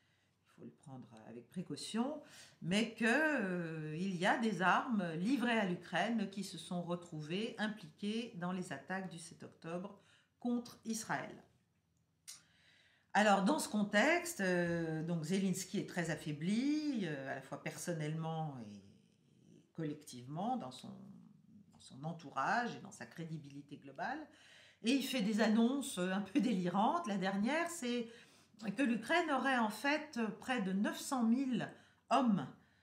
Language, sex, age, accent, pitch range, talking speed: French, female, 50-69, French, 165-235 Hz, 135 wpm